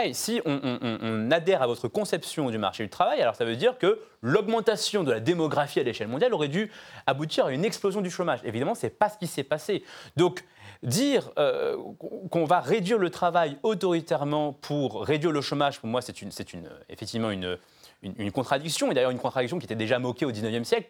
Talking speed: 215 wpm